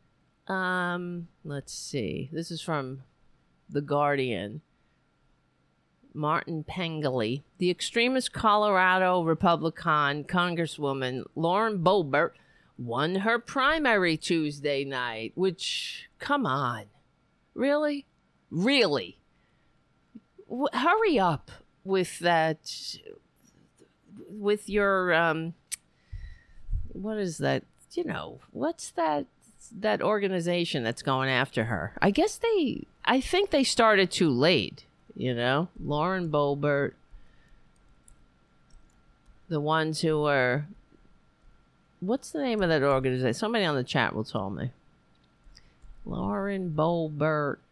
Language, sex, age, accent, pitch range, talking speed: English, female, 50-69, American, 130-195 Hz, 100 wpm